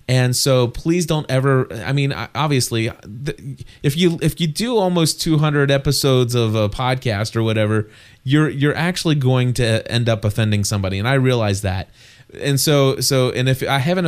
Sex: male